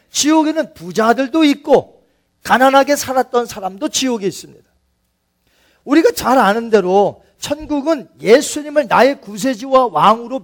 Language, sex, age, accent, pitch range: Korean, male, 40-59, native, 195-280 Hz